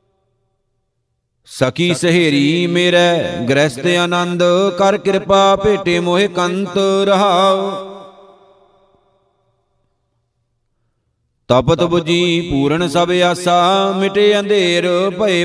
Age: 50-69